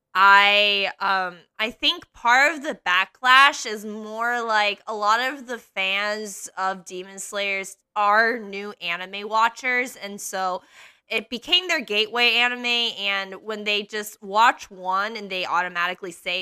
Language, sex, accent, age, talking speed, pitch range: English, female, American, 20-39, 145 wpm, 185-235 Hz